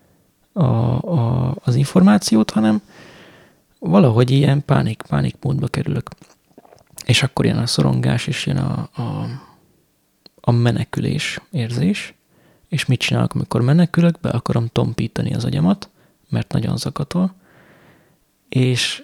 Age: 20-39